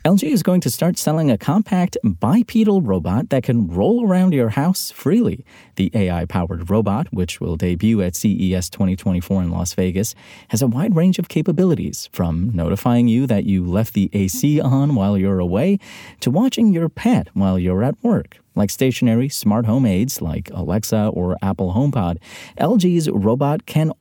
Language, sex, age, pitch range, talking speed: English, male, 30-49, 95-140 Hz, 170 wpm